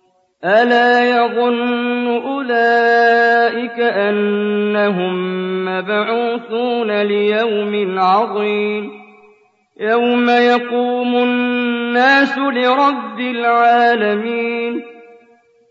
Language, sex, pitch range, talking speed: Arabic, male, 195-240 Hz, 45 wpm